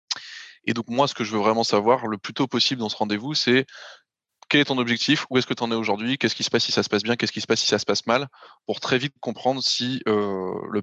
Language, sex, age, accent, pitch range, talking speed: French, male, 20-39, French, 105-125 Hz, 295 wpm